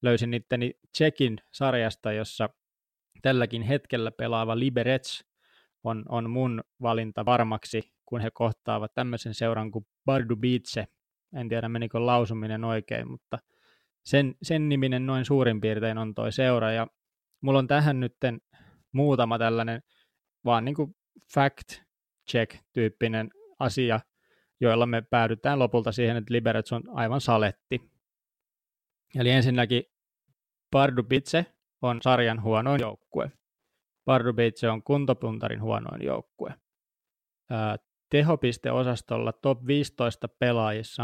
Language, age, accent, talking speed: Finnish, 20-39, native, 105 wpm